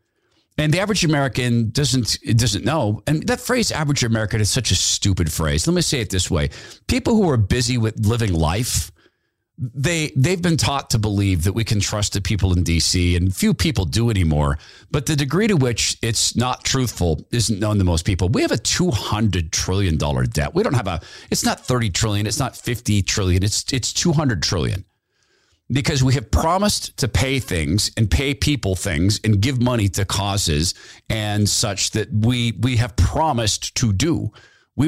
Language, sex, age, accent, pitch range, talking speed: English, male, 40-59, American, 95-125 Hz, 195 wpm